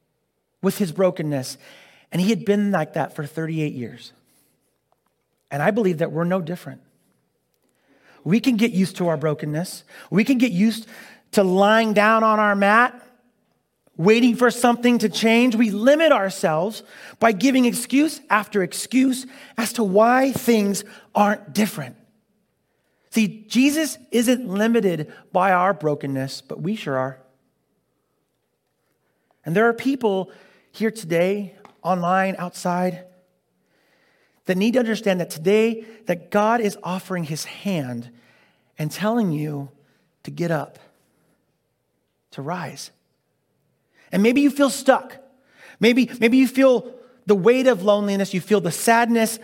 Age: 30-49